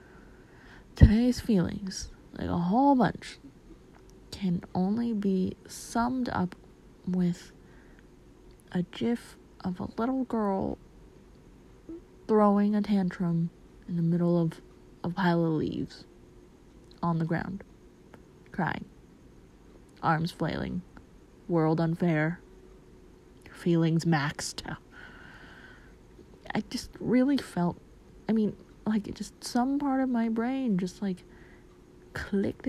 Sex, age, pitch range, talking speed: female, 20-39, 175-220 Hz, 105 wpm